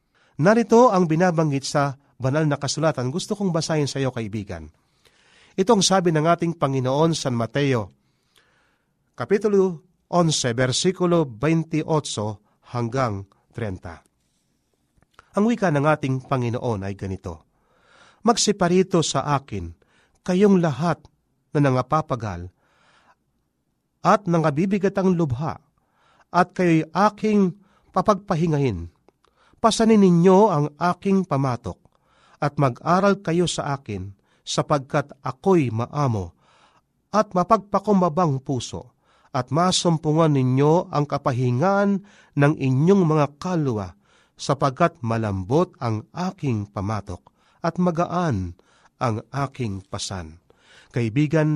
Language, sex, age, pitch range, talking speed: Filipino, male, 40-59, 125-180 Hz, 100 wpm